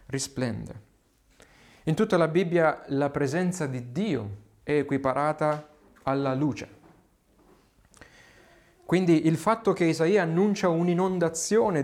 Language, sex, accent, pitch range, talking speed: Italian, male, native, 125-165 Hz, 100 wpm